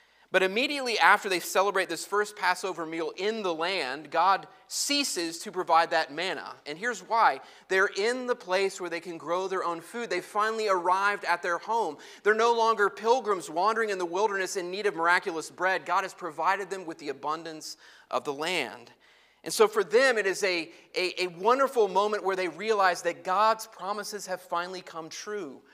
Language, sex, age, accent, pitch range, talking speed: English, male, 30-49, American, 165-210 Hz, 190 wpm